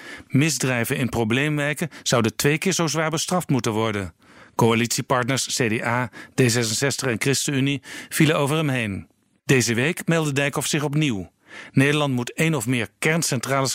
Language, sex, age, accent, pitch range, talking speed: Dutch, male, 50-69, Dutch, 120-145 Hz, 140 wpm